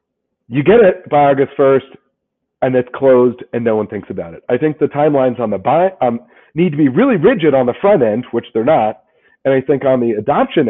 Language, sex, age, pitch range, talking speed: English, male, 40-59, 130-175 Hz, 235 wpm